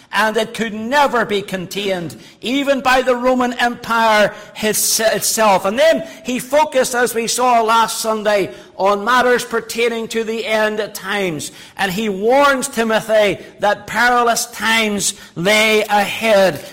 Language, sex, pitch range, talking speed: English, male, 185-225 Hz, 140 wpm